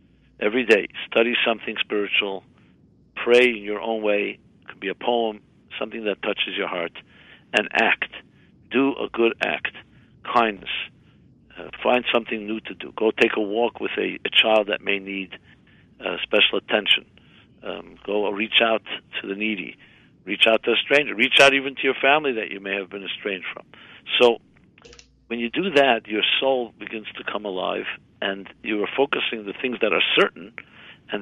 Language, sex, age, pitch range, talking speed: English, male, 60-79, 100-125 Hz, 180 wpm